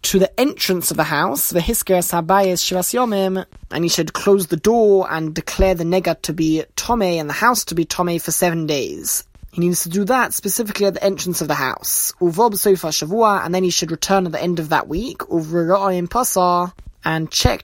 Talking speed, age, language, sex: 195 wpm, 20-39, English, male